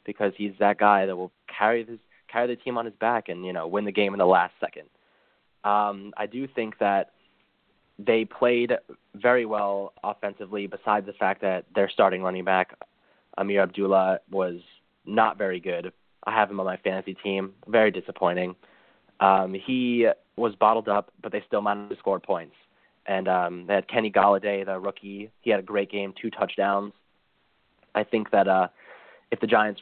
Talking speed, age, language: 180 wpm, 20-39, English